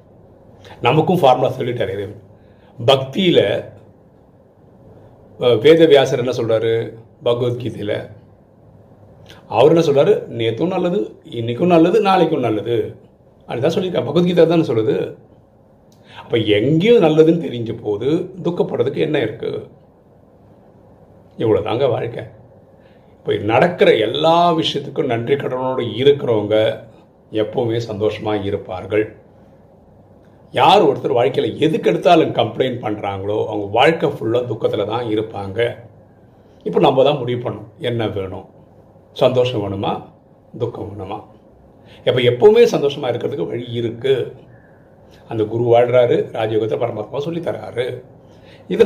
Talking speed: 100 wpm